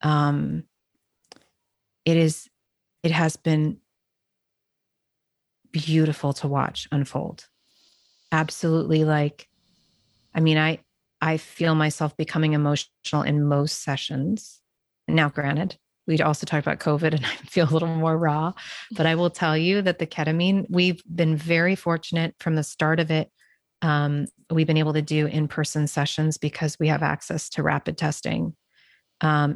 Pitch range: 150-165 Hz